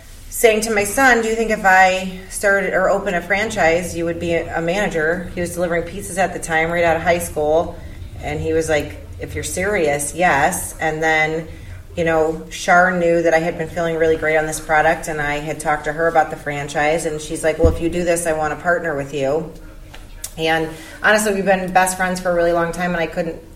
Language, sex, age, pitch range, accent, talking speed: English, female, 30-49, 150-175 Hz, American, 235 wpm